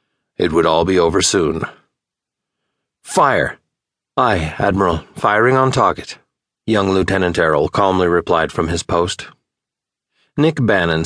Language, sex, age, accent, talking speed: English, male, 40-59, American, 120 wpm